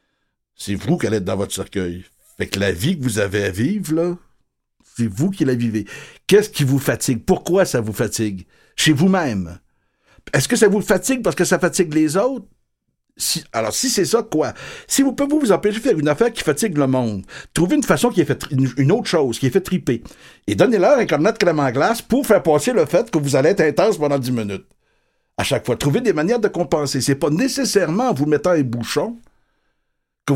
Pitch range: 130-200 Hz